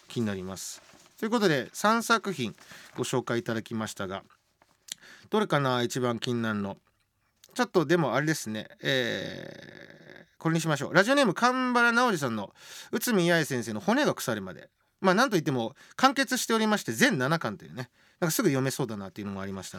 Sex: male